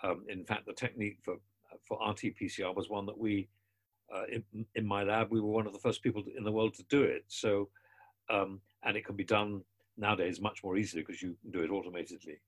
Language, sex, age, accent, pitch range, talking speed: English, male, 50-69, British, 100-120 Hz, 225 wpm